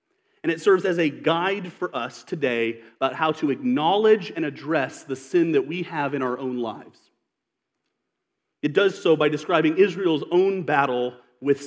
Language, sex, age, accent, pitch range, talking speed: English, male, 30-49, American, 145-225 Hz, 170 wpm